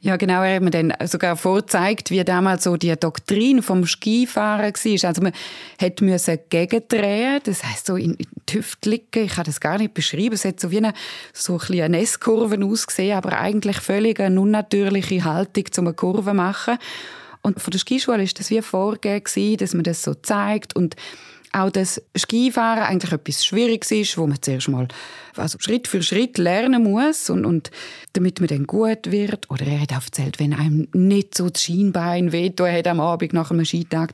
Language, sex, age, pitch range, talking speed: German, female, 20-39, 160-205 Hz, 190 wpm